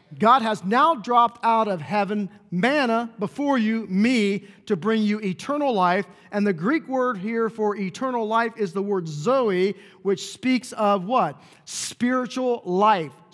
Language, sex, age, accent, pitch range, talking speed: English, male, 40-59, American, 195-240 Hz, 155 wpm